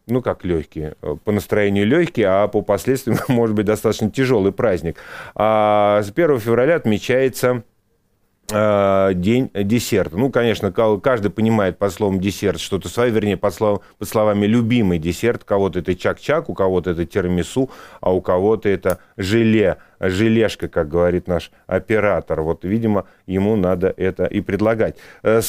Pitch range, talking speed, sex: 100-120 Hz, 150 wpm, male